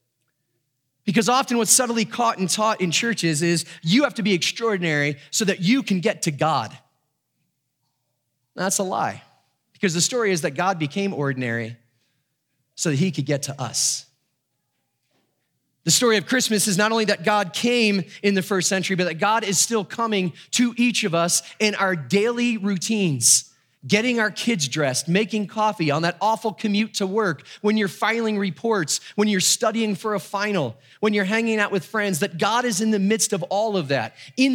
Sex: male